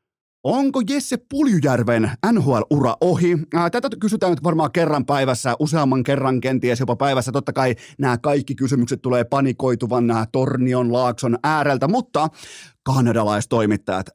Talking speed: 125 wpm